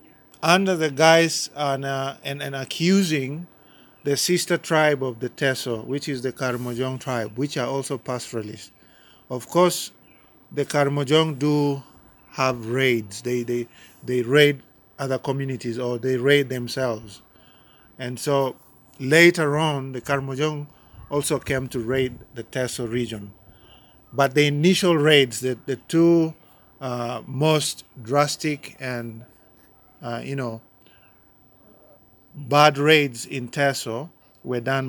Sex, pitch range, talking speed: male, 120-145 Hz, 125 wpm